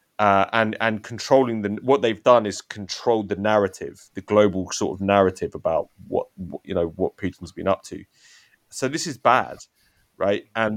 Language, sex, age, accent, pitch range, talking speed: English, male, 30-49, British, 95-120 Hz, 185 wpm